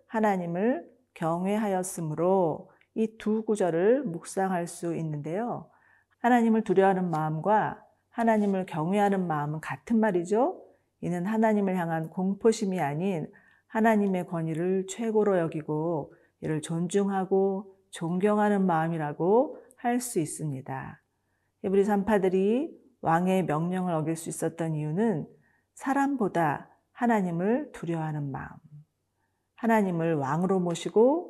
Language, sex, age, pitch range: Korean, female, 40-59, 160-215 Hz